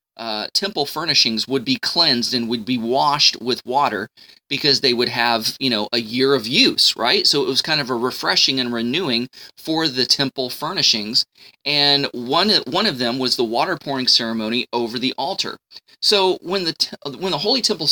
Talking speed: 190 wpm